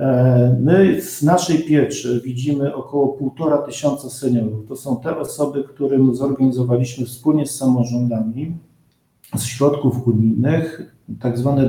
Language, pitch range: Polish, 120-145 Hz